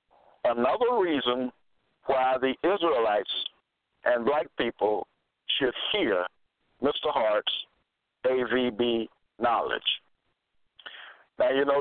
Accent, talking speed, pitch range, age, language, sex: American, 85 wpm, 120-175 Hz, 60-79, English, male